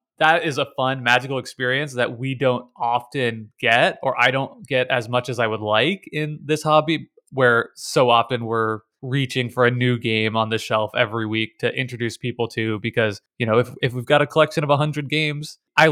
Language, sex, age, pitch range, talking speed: English, male, 20-39, 115-140 Hz, 205 wpm